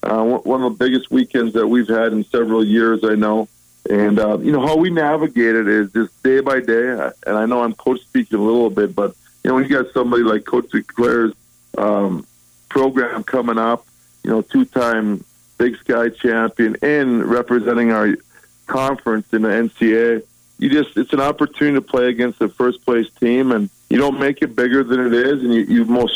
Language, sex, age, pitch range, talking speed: English, male, 40-59, 105-125 Hz, 205 wpm